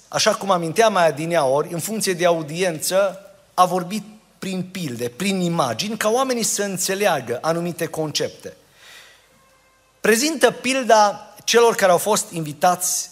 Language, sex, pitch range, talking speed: Romanian, male, 170-225 Hz, 135 wpm